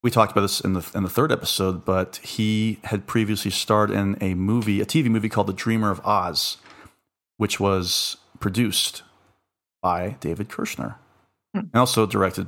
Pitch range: 95-115 Hz